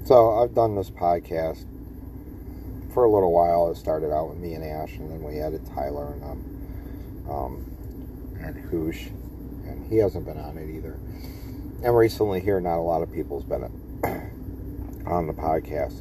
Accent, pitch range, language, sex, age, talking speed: American, 75-95 Hz, English, male, 40-59, 170 wpm